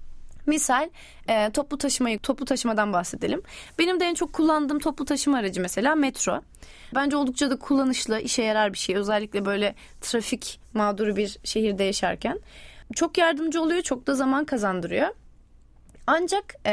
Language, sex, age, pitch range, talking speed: Turkish, female, 20-39, 220-320 Hz, 140 wpm